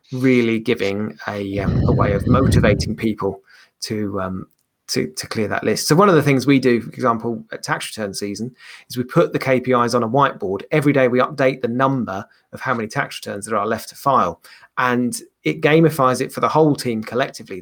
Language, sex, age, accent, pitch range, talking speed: English, male, 30-49, British, 110-135 Hz, 210 wpm